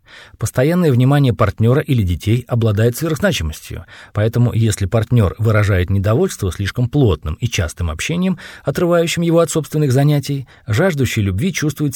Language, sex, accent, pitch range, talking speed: Russian, male, native, 100-145 Hz, 125 wpm